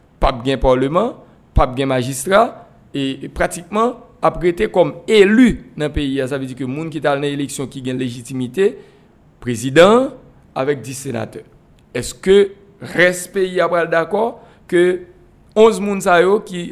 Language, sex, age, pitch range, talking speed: French, male, 60-79, 130-175 Hz, 145 wpm